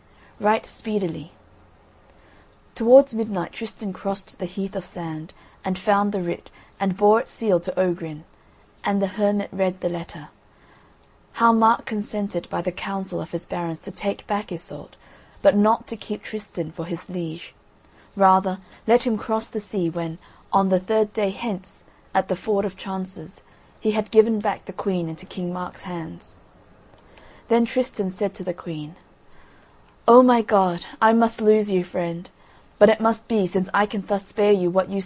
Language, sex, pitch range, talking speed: English, female, 175-215 Hz, 170 wpm